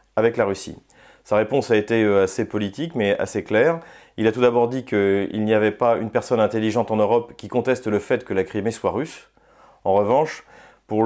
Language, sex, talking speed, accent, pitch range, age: French, male, 205 wpm, French, 105-120 Hz, 30-49